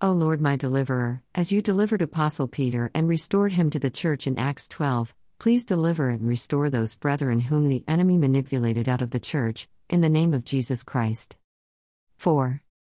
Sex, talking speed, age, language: female, 180 wpm, 50-69, English